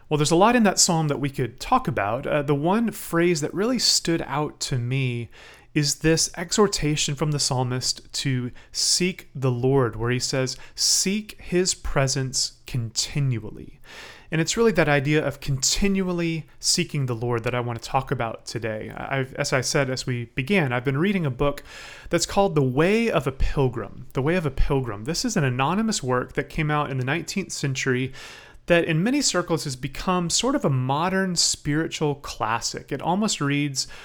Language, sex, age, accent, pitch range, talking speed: English, male, 30-49, American, 135-175 Hz, 190 wpm